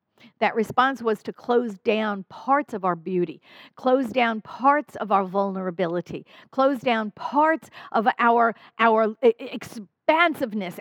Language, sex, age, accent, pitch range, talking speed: English, female, 50-69, American, 215-275 Hz, 130 wpm